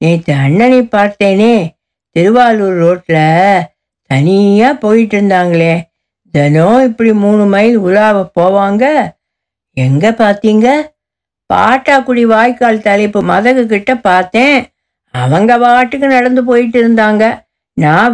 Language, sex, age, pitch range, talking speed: Tamil, female, 60-79, 185-250 Hz, 95 wpm